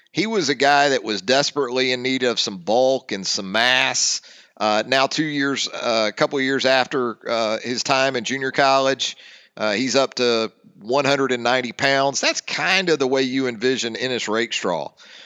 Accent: American